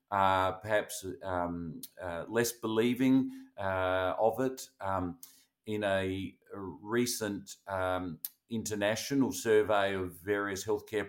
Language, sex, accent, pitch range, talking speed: English, male, Australian, 95-110 Hz, 110 wpm